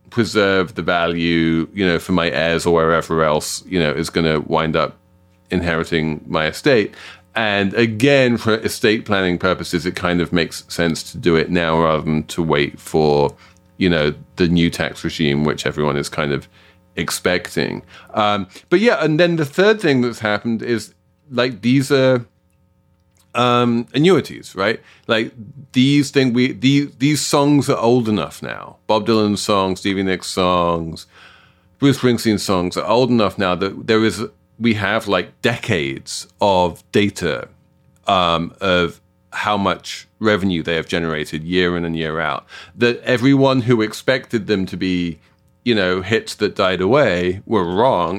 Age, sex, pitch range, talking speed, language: 30-49, male, 85-115 Hz, 165 wpm, English